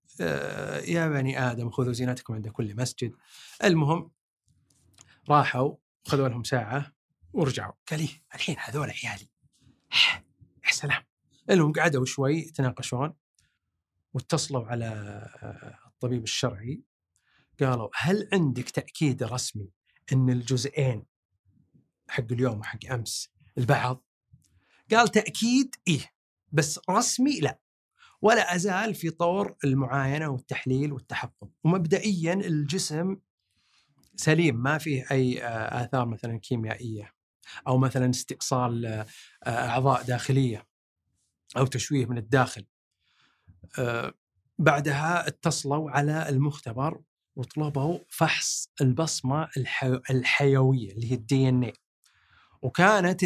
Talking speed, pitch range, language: 95 wpm, 125-155 Hz, Arabic